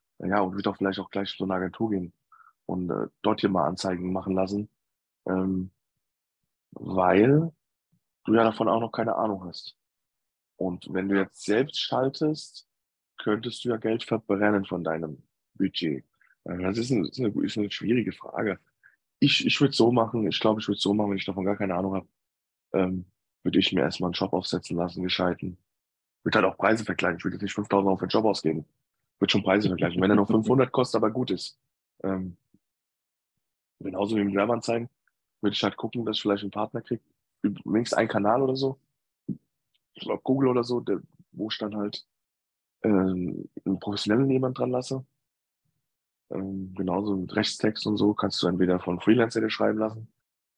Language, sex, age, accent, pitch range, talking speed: German, male, 20-39, German, 95-110 Hz, 185 wpm